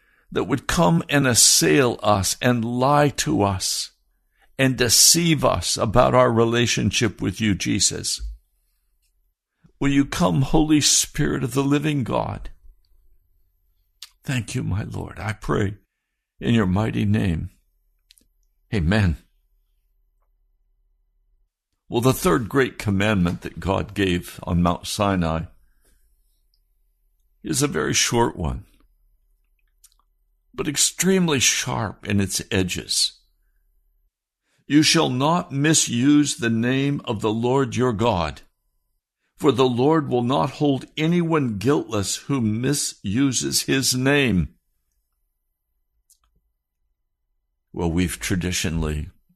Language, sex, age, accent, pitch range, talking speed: English, male, 60-79, American, 85-130 Hz, 105 wpm